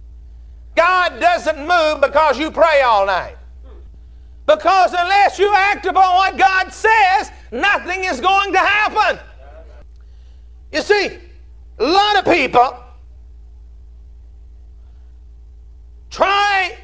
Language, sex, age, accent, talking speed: English, male, 50-69, American, 100 wpm